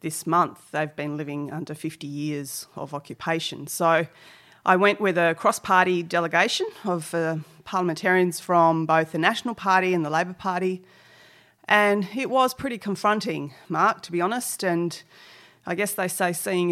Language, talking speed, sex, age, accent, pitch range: English, 160 wpm, female, 30-49, Australian, 165-200 Hz